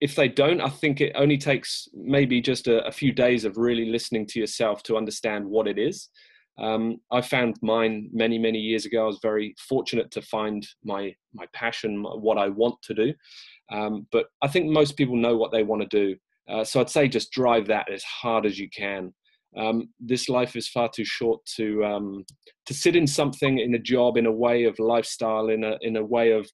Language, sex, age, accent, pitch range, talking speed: English, male, 20-39, British, 105-125 Hz, 220 wpm